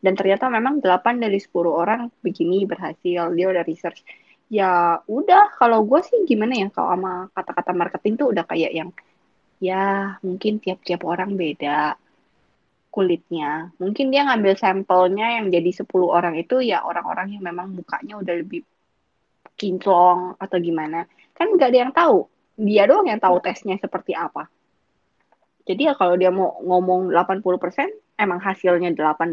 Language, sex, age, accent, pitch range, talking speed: Indonesian, female, 20-39, native, 180-255 Hz, 150 wpm